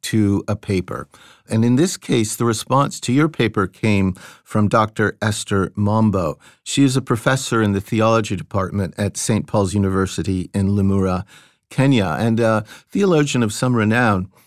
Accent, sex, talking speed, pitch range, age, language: American, male, 160 wpm, 105-135 Hz, 50-69, English